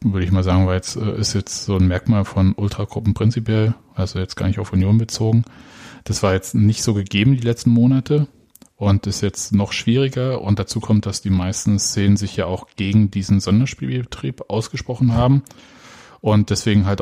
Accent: German